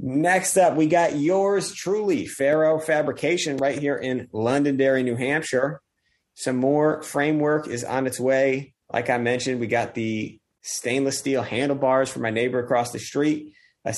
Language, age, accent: English, 30-49, American